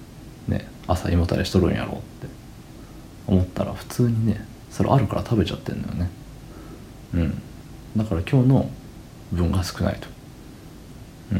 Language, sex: Japanese, male